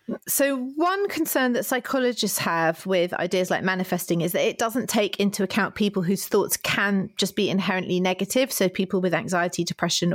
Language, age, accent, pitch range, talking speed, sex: English, 30-49, British, 170-200 Hz, 175 wpm, female